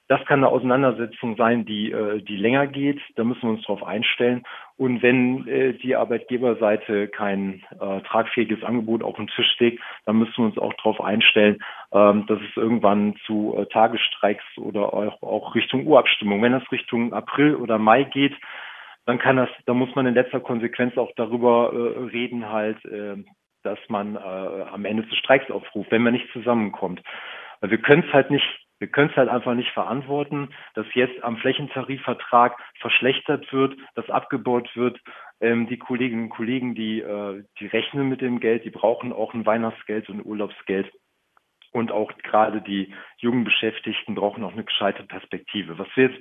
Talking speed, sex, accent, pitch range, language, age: 175 wpm, male, German, 110-125 Hz, German, 40-59